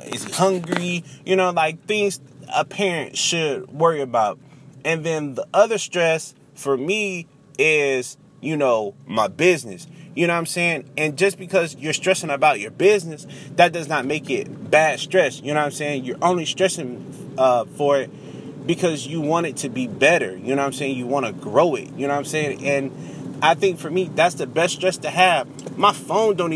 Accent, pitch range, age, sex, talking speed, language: American, 140-175 Hz, 30-49, male, 205 wpm, English